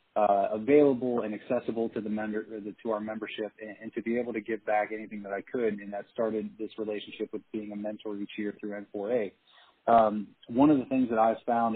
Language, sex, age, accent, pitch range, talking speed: English, male, 20-39, American, 105-115 Hz, 225 wpm